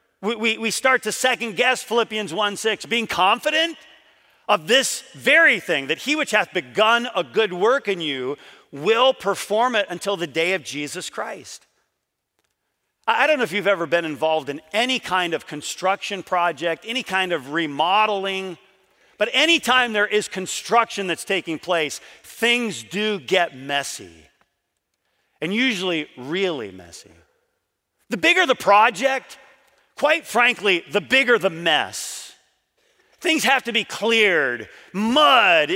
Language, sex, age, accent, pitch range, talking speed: English, male, 40-59, American, 185-260 Hz, 140 wpm